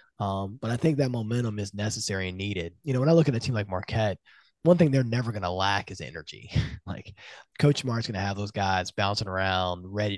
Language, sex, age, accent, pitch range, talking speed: English, male, 20-39, American, 90-115 Hz, 235 wpm